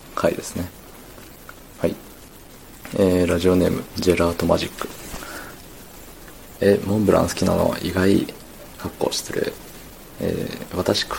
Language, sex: Japanese, male